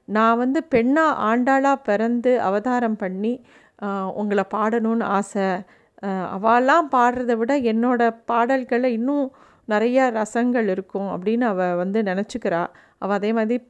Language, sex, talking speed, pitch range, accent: Tamil, female, 115 wpm, 190-230 Hz, native